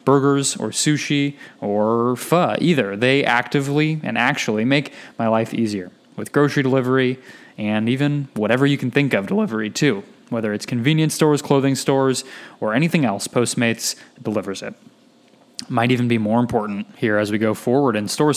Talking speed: 165 wpm